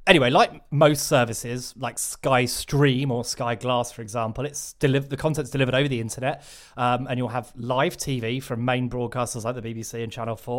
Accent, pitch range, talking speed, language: British, 120-145 Hz, 195 wpm, English